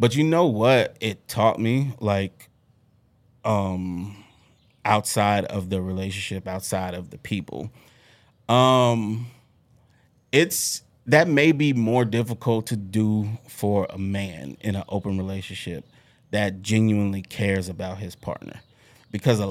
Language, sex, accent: English, male, American